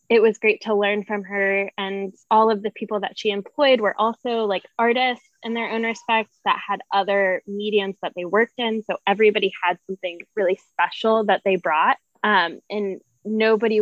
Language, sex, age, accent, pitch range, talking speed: English, female, 10-29, American, 195-220 Hz, 185 wpm